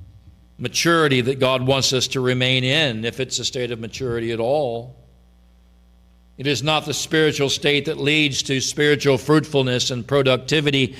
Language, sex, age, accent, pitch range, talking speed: English, male, 50-69, American, 105-150 Hz, 160 wpm